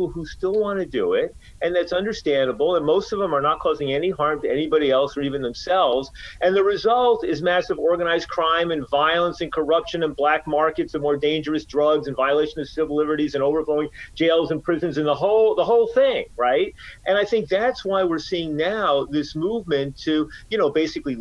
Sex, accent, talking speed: male, American, 205 wpm